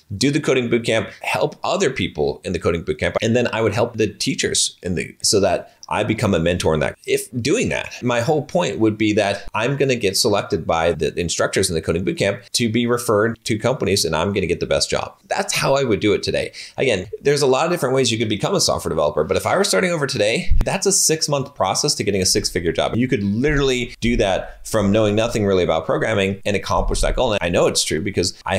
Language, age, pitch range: English, 30-49, 95-135 Hz